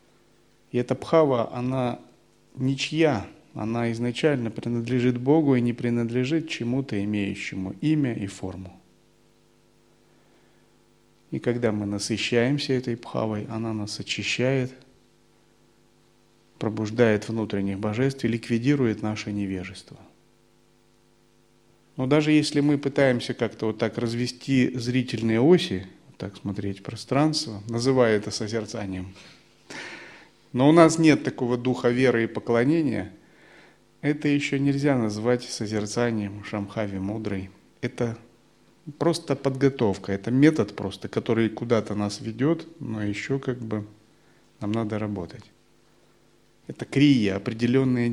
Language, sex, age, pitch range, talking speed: Russian, male, 30-49, 100-130 Hz, 110 wpm